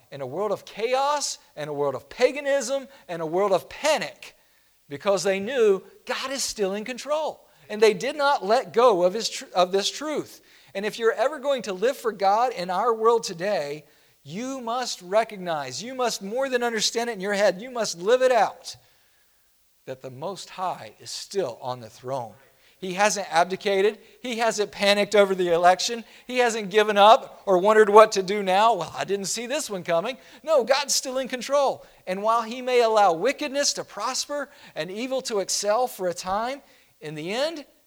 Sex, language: male, English